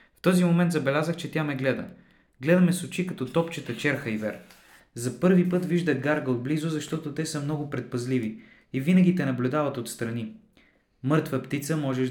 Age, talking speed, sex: 20-39, 175 wpm, male